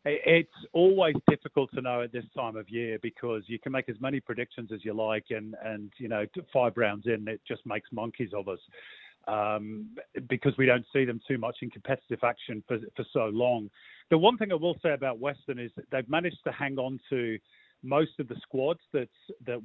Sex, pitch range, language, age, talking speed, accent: male, 115-140 Hz, English, 40-59, 215 wpm, British